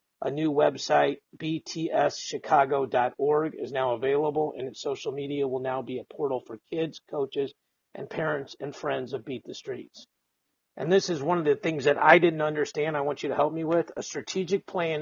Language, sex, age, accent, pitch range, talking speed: English, male, 50-69, American, 140-170 Hz, 190 wpm